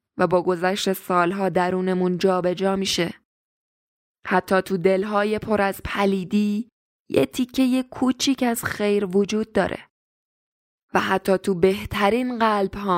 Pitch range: 185-235 Hz